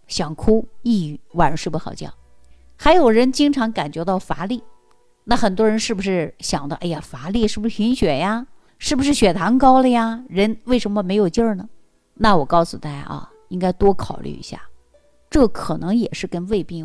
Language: Chinese